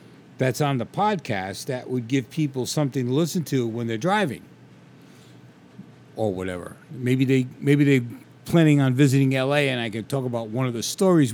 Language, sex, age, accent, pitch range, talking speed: English, male, 50-69, American, 110-150 Hz, 180 wpm